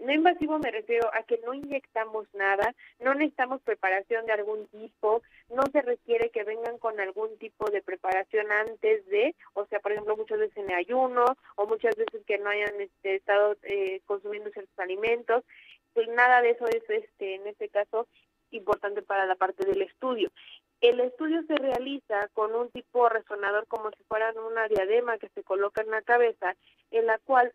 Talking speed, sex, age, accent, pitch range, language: 180 wpm, female, 30-49, Mexican, 215-275 Hz, Spanish